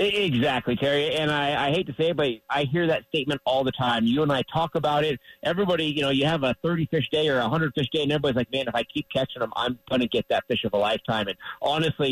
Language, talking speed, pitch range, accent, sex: English, 280 wpm, 125-160 Hz, American, male